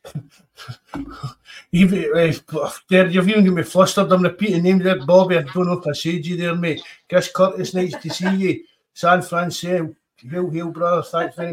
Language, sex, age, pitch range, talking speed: English, male, 60-79, 140-170 Hz, 185 wpm